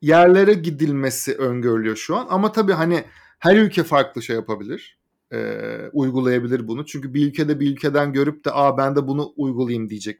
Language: Turkish